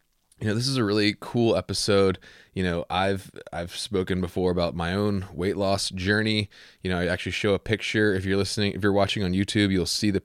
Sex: male